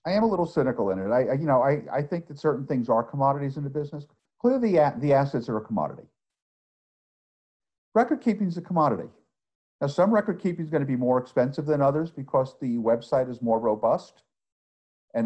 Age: 50-69